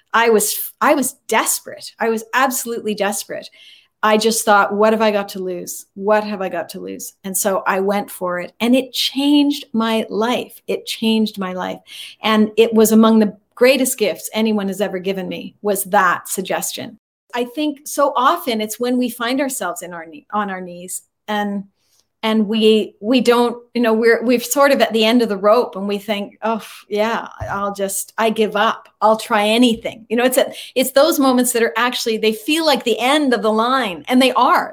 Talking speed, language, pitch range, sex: 205 wpm, English, 205-255 Hz, female